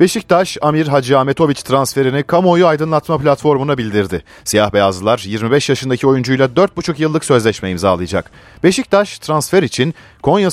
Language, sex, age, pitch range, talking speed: Turkish, male, 40-59, 95-150 Hz, 125 wpm